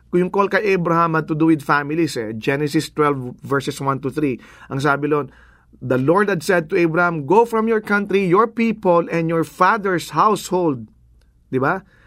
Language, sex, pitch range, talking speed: English, male, 155-210 Hz, 180 wpm